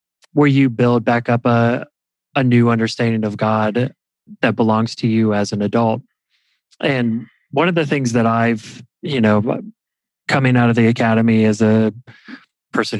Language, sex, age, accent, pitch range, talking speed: English, male, 20-39, American, 110-130 Hz, 160 wpm